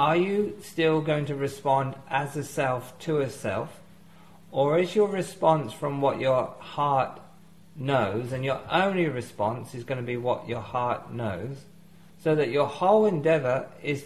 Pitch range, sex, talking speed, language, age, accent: 135-175 Hz, male, 165 wpm, English, 50-69, British